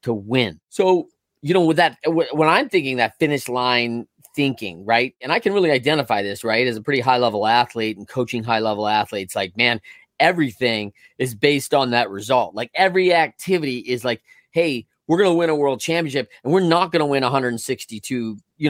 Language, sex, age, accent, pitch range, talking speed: English, male, 30-49, American, 115-160 Hz, 195 wpm